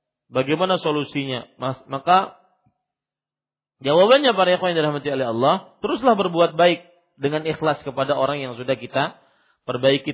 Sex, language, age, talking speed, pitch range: male, Malay, 40-59, 130 wpm, 130-175 Hz